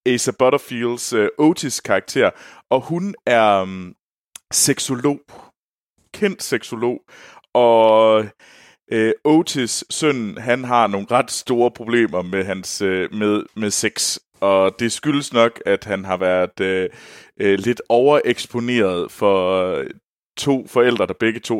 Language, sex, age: Danish, male, 30-49